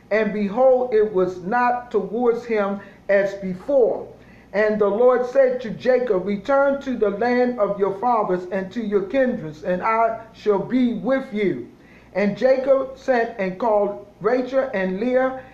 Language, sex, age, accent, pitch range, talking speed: English, male, 50-69, American, 195-255 Hz, 155 wpm